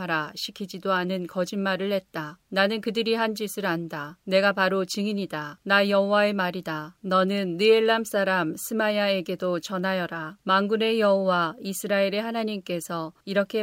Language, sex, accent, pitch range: Korean, female, native, 180-210 Hz